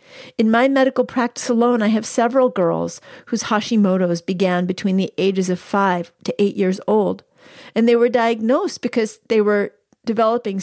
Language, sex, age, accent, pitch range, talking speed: English, female, 40-59, American, 185-235 Hz, 165 wpm